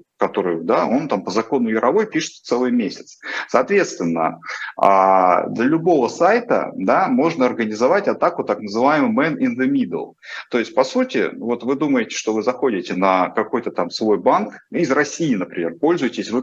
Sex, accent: male, native